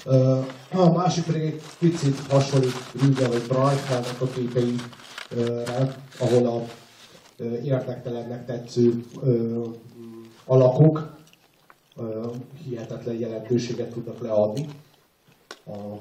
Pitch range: 115-135 Hz